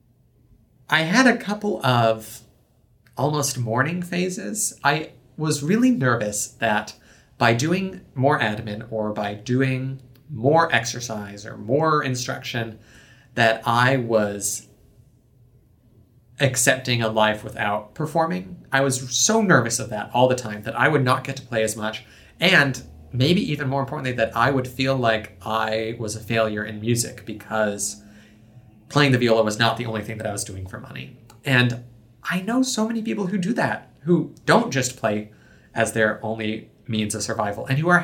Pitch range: 110-140 Hz